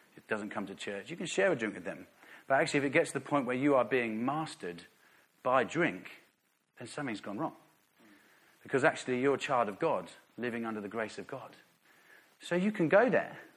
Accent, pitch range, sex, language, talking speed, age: British, 110-150 Hz, male, English, 210 wpm, 40-59